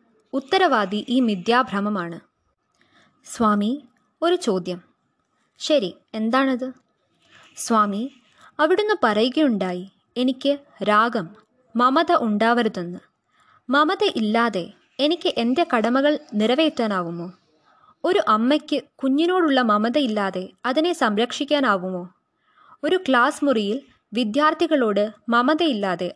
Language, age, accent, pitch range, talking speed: Malayalam, 20-39, native, 210-295 Hz, 75 wpm